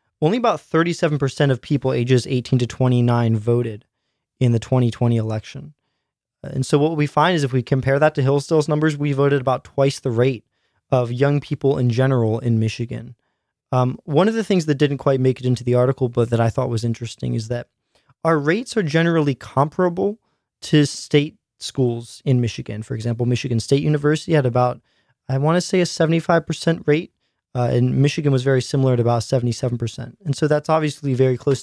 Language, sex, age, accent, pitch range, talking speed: English, male, 20-39, American, 120-150 Hz, 190 wpm